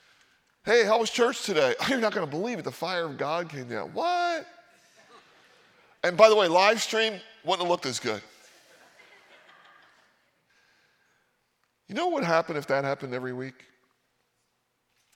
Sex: male